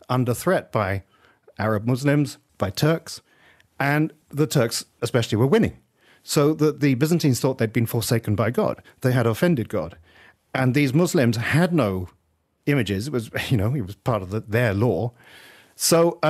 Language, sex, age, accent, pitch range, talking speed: English, male, 40-59, British, 115-155 Hz, 165 wpm